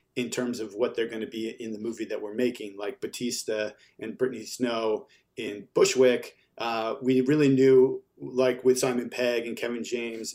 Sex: male